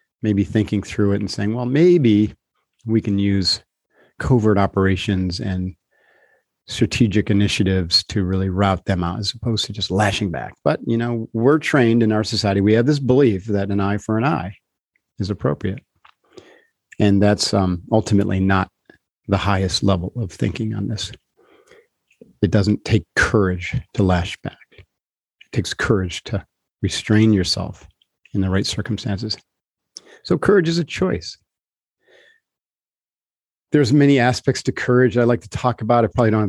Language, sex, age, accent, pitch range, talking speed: English, male, 40-59, American, 100-120 Hz, 155 wpm